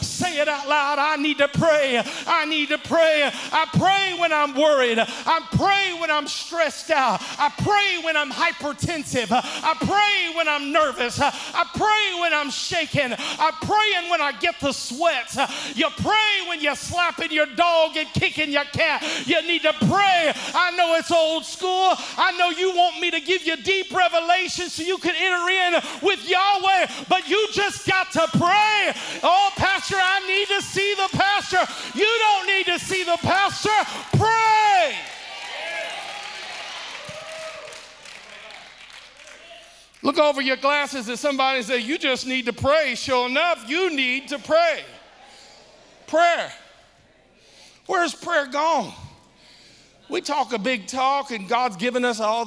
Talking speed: 155 wpm